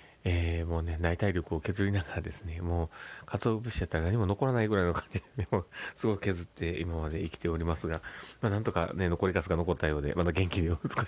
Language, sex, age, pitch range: Japanese, male, 30-49, 85-100 Hz